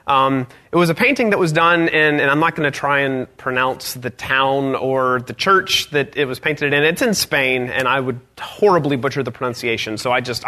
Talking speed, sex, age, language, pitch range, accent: 230 wpm, male, 30-49, English, 135-165 Hz, American